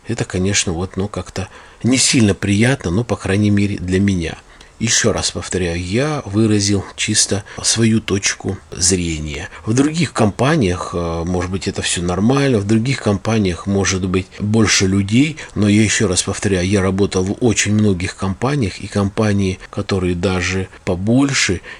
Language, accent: Russian, native